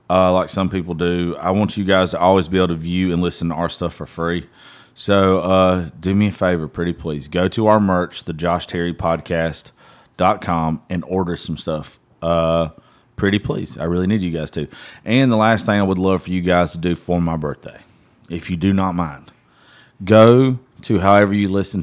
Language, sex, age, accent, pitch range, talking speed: English, male, 30-49, American, 80-95 Hz, 205 wpm